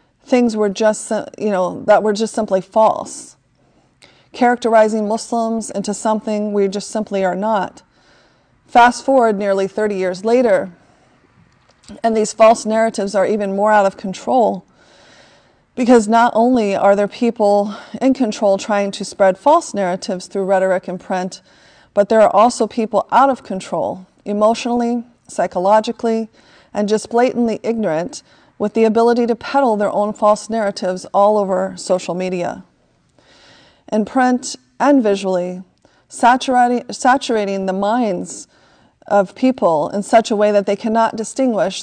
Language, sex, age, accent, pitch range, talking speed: English, female, 30-49, American, 195-230 Hz, 140 wpm